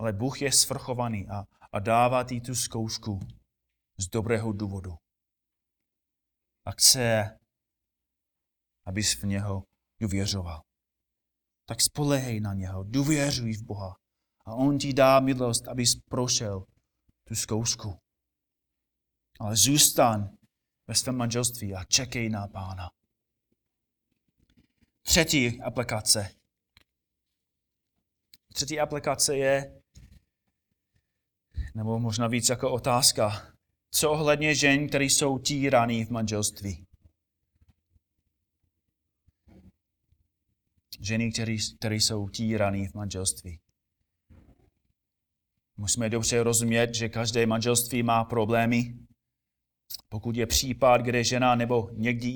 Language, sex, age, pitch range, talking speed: Czech, male, 30-49, 95-120 Hz, 95 wpm